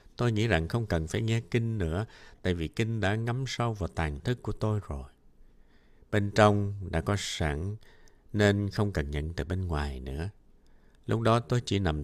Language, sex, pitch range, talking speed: Vietnamese, male, 80-115 Hz, 195 wpm